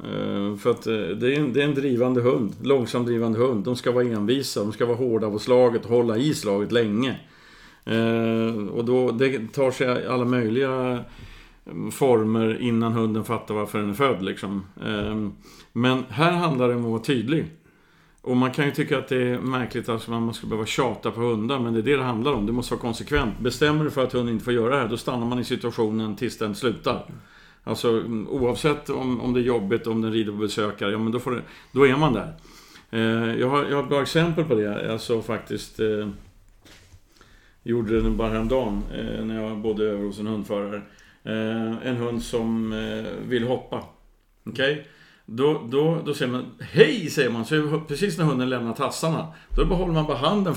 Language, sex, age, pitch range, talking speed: Swedish, male, 50-69, 110-135 Hz, 205 wpm